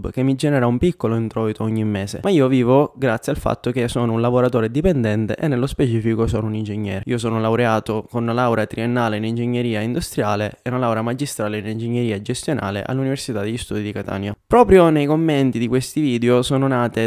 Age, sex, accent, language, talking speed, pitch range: 20-39, male, native, Italian, 195 wpm, 115-130 Hz